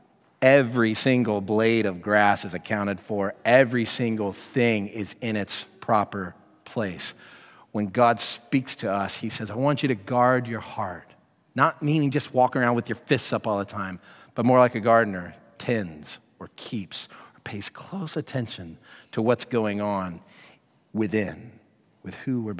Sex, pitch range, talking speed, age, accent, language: male, 110-145 Hz, 165 wpm, 40-59, American, English